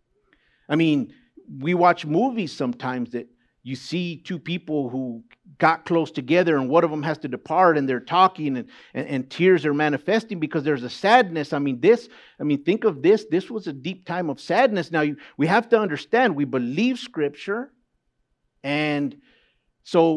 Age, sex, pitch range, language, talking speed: 50-69, male, 145-200 Hz, English, 180 wpm